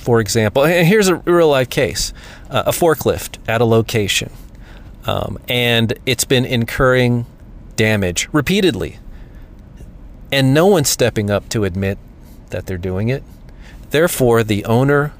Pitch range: 105-135 Hz